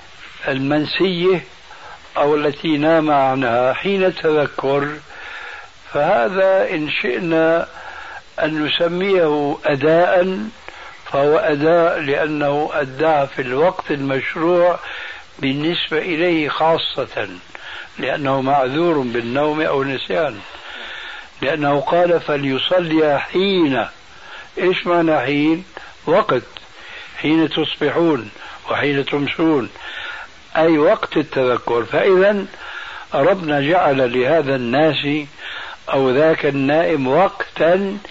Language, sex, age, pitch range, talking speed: Arabic, male, 60-79, 140-170 Hz, 80 wpm